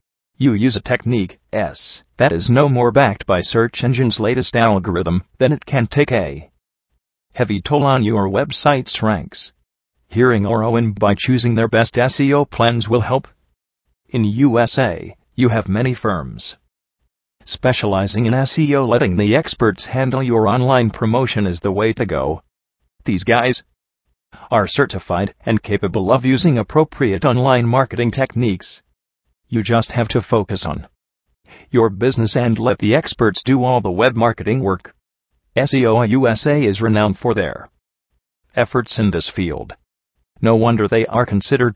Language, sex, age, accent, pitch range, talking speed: English, male, 40-59, American, 90-125 Hz, 150 wpm